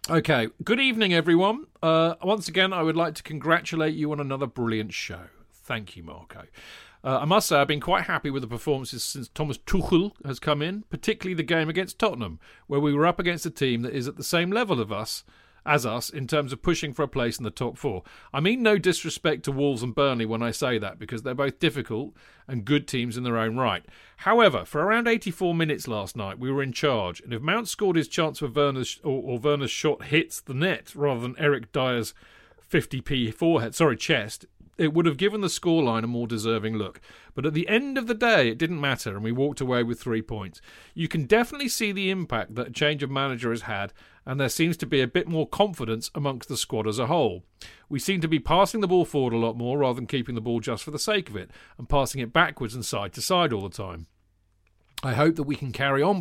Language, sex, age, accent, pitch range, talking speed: English, male, 40-59, British, 115-165 Hz, 235 wpm